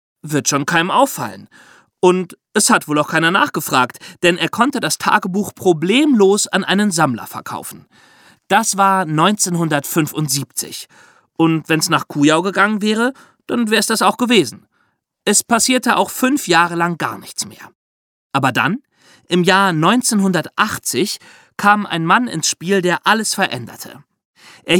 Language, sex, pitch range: German, male, 150-205 Hz